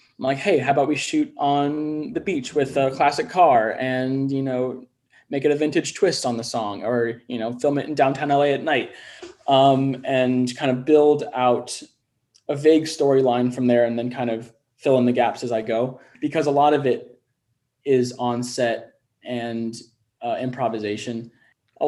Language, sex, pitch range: English, male, 120-140 Hz